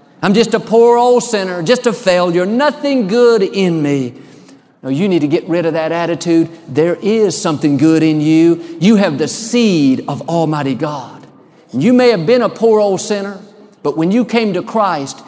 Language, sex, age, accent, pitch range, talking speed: English, male, 50-69, American, 155-220 Hz, 195 wpm